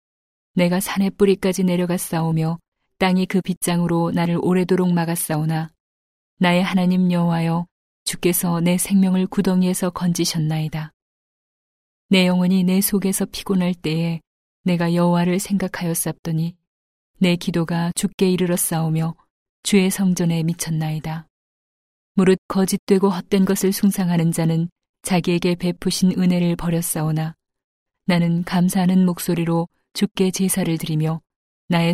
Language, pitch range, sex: Korean, 165-185 Hz, female